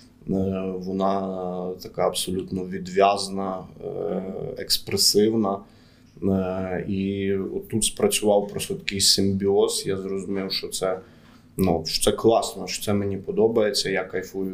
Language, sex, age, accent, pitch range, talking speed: Ukrainian, male, 20-39, native, 95-105 Hz, 105 wpm